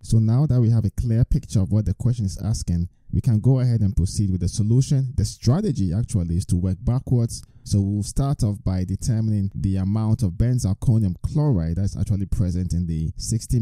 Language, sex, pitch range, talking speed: English, male, 90-115 Hz, 205 wpm